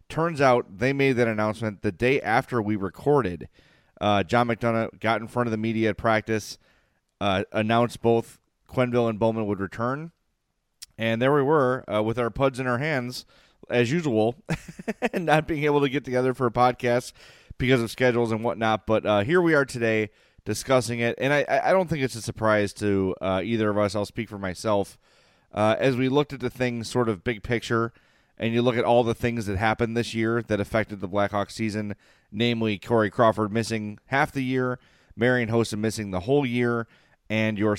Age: 30-49